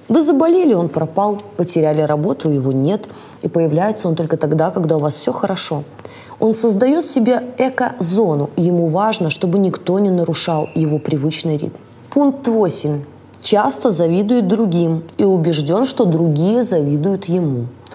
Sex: female